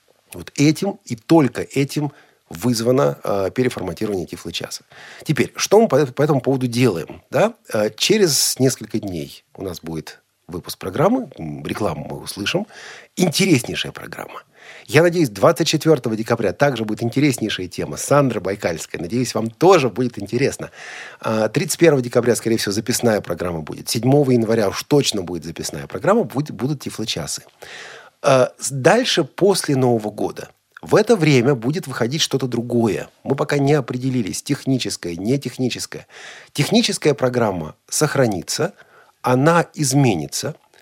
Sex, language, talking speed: male, Russian, 130 wpm